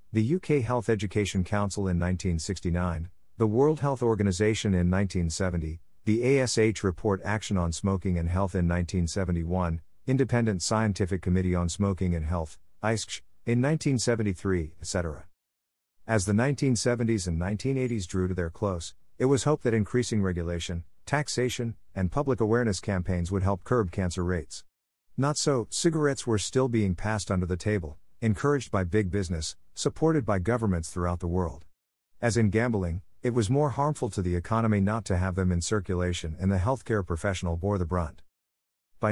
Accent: American